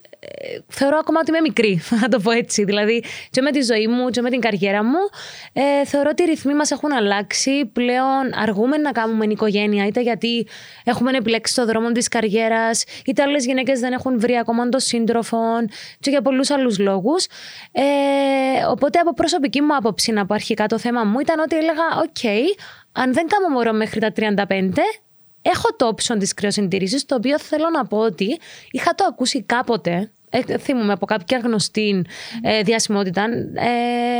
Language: English